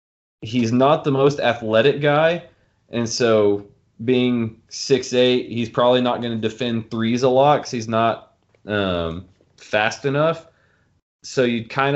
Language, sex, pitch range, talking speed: English, male, 105-130 Hz, 140 wpm